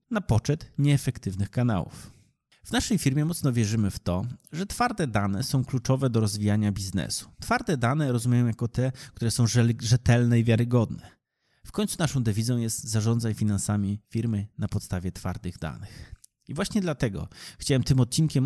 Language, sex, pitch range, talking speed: Polish, male, 105-135 Hz, 155 wpm